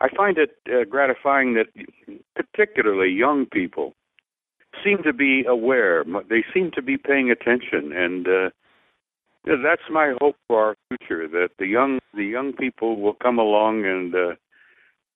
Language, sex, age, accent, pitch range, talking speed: English, male, 60-79, American, 110-140 Hz, 150 wpm